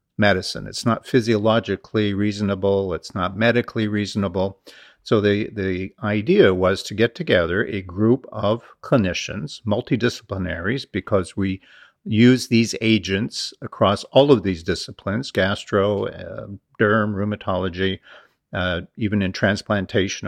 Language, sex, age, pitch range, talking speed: English, male, 50-69, 95-120 Hz, 120 wpm